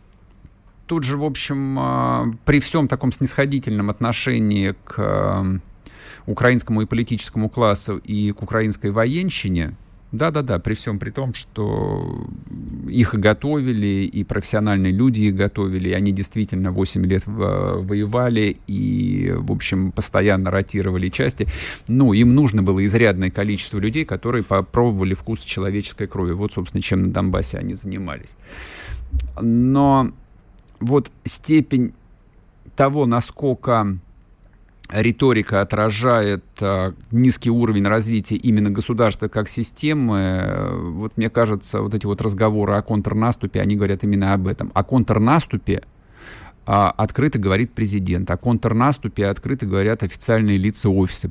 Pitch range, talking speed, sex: 95-120 Hz, 120 wpm, male